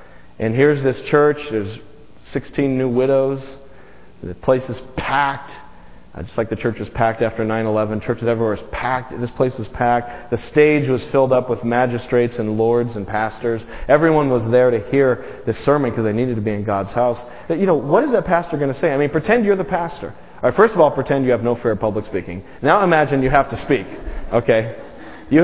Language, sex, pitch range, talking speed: English, male, 100-140 Hz, 215 wpm